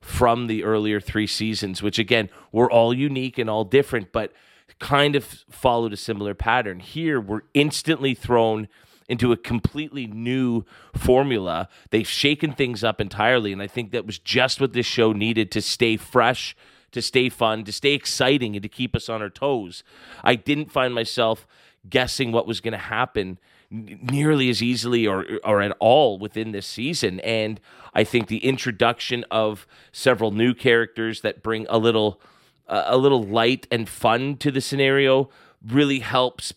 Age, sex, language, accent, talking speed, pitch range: 30-49, male, English, American, 170 wpm, 110-125 Hz